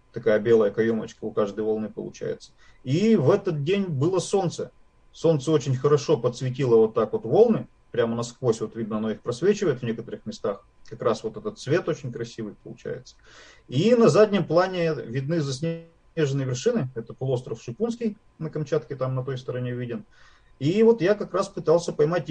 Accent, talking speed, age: native, 165 wpm, 30-49